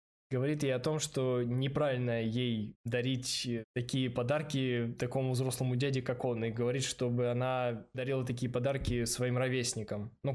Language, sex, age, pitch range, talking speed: Russian, male, 20-39, 125-150 Hz, 145 wpm